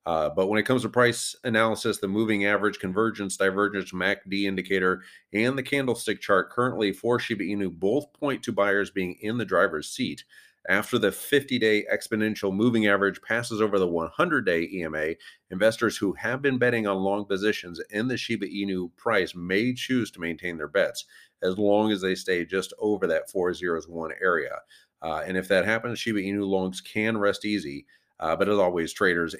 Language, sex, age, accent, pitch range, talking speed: English, male, 40-59, American, 90-110 Hz, 180 wpm